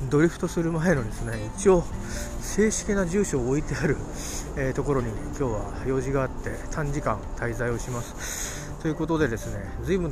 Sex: male